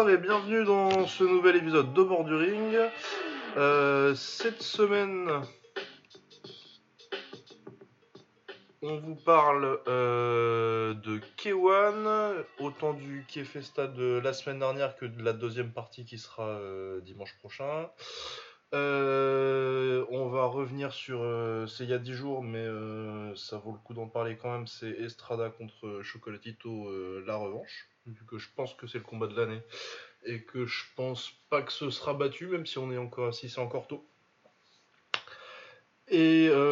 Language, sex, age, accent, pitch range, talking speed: French, male, 20-39, French, 110-145 Hz, 150 wpm